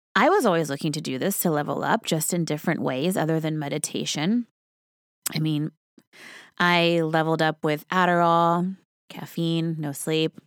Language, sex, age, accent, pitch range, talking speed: English, female, 20-39, American, 160-205 Hz, 155 wpm